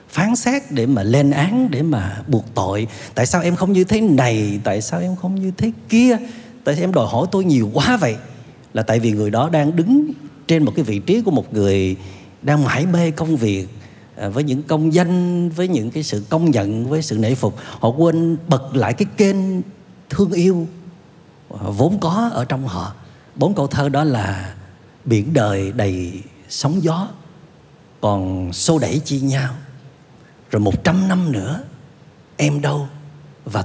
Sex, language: male, Vietnamese